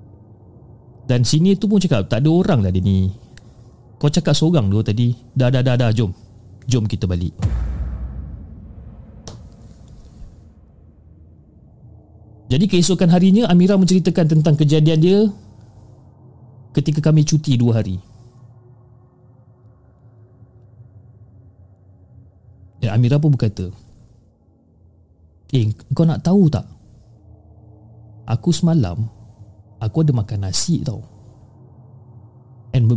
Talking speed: 100 wpm